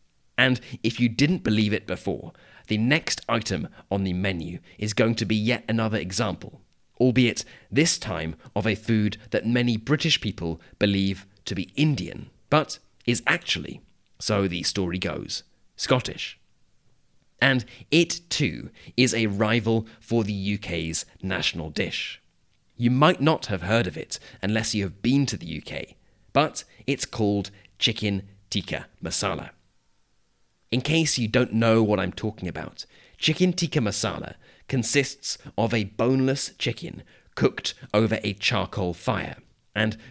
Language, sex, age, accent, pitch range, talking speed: English, male, 30-49, British, 100-125 Hz, 145 wpm